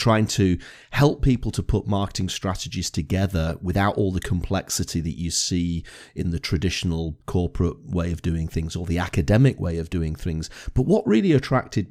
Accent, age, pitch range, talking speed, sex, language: British, 30-49, 90-120 Hz, 175 wpm, male, English